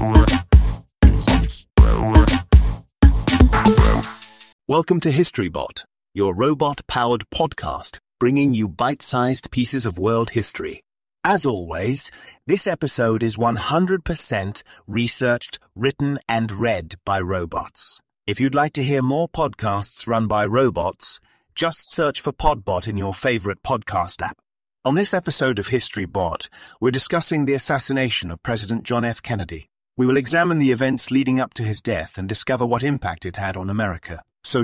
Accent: British